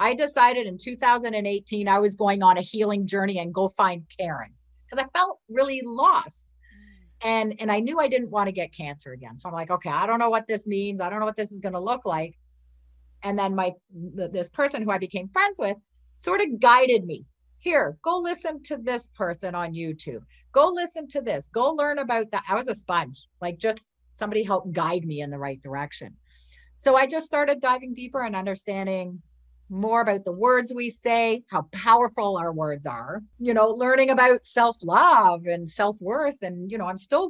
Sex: female